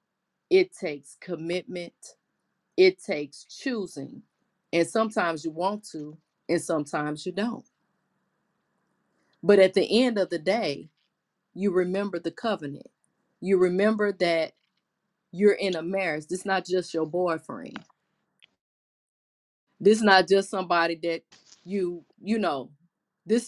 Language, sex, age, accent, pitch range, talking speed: English, female, 30-49, American, 175-220 Hz, 125 wpm